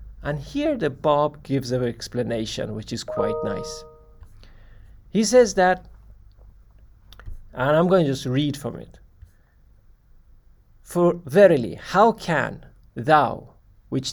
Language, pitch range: English, 105-155 Hz